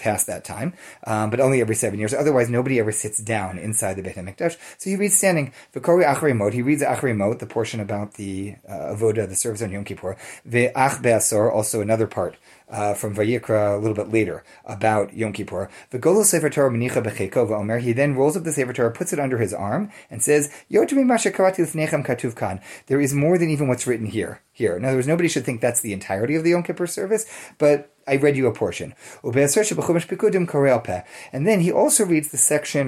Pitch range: 110-145 Hz